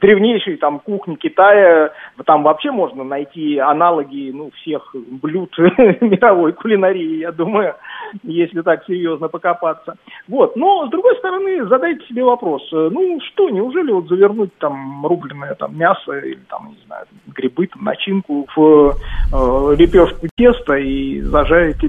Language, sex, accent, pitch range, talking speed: Russian, male, native, 150-235 Hz, 120 wpm